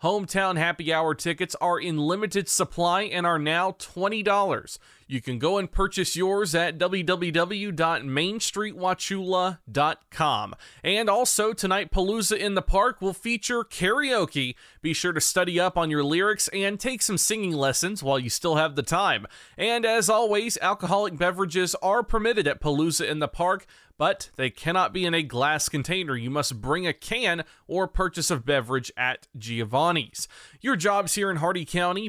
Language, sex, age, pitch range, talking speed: English, male, 30-49, 155-195 Hz, 160 wpm